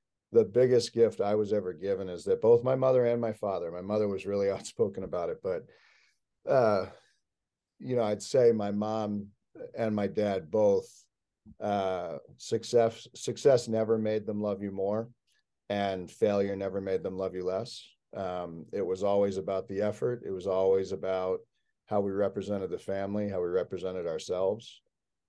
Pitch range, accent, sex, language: 100-125 Hz, American, male, English